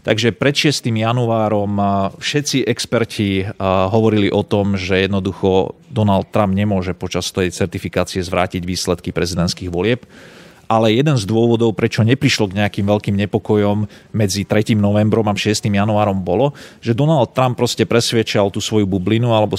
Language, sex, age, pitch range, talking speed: Slovak, male, 40-59, 100-115 Hz, 145 wpm